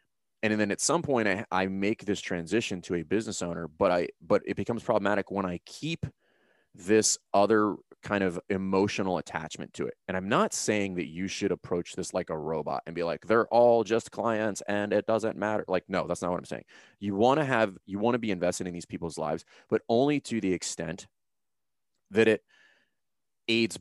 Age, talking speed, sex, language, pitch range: 30-49, 200 wpm, male, English, 90-110 Hz